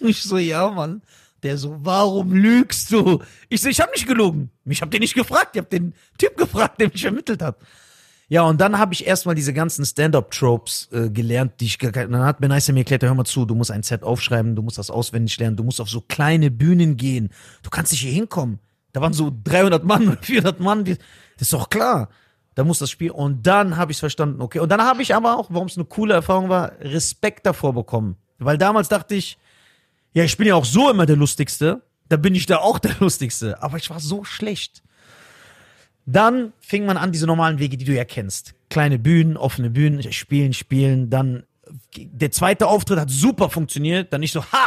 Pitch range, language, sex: 130-190 Hz, German, male